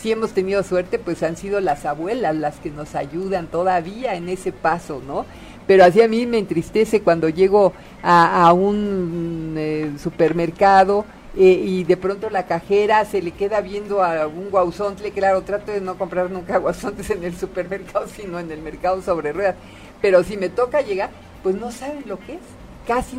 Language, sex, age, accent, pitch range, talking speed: Spanish, female, 50-69, Mexican, 165-205 Hz, 185 wpm